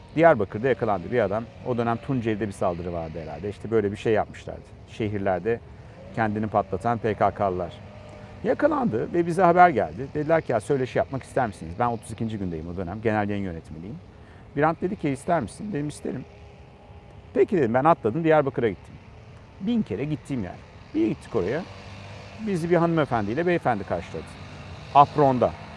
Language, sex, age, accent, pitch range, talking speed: Turkish, male, 50-69, native, 100-140 Hz, 155 wpm